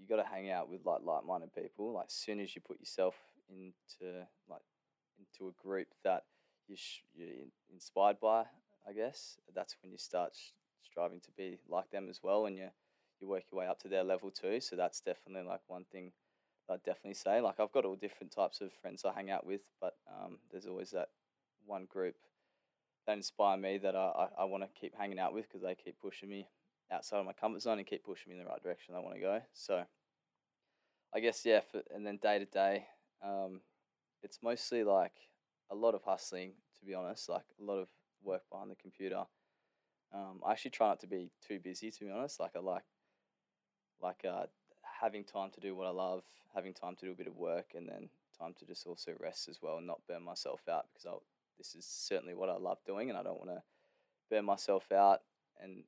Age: 20-39